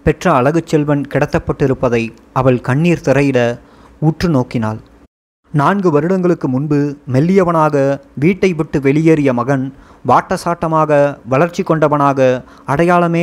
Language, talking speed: Tamil, 90 wpm